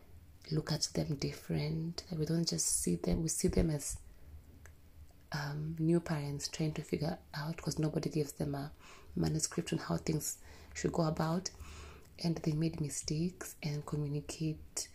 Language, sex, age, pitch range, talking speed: English, female, 20-39, 95-160 Hz, 155 wpm